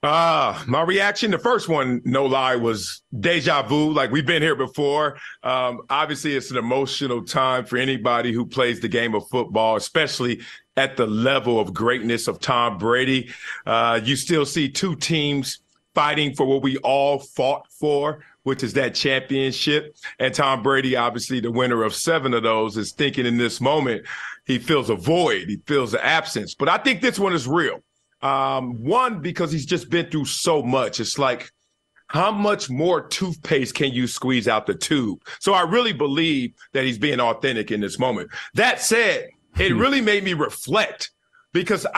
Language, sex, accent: English, male, American